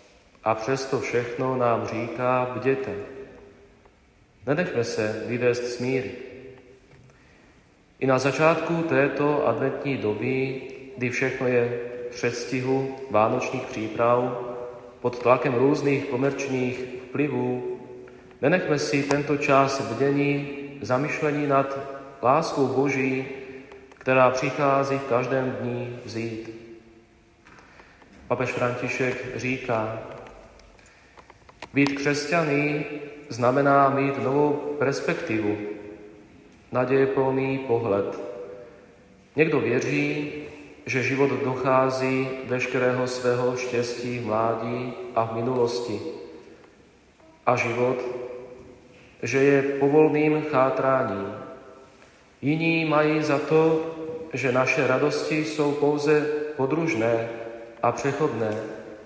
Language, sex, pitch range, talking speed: Slovak, male, 120-140 Hz, 85 wpm